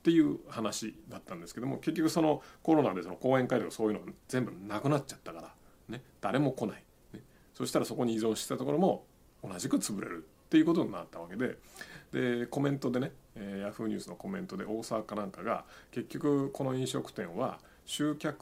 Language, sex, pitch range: Japanese, male, 110-155 Hz